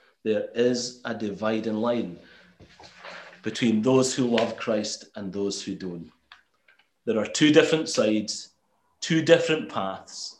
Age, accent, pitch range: 30-49, British, 100-130 Hz